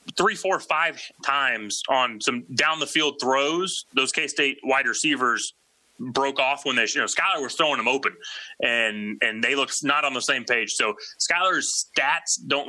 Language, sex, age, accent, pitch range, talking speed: English, male, 30-49, American, 140-190 Hz, 185 wpm